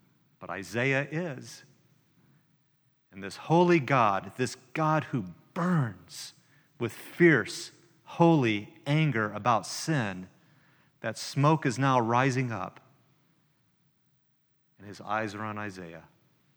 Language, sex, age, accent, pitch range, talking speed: English, male, 40-59, American, 125-165 Hz, 105 wpm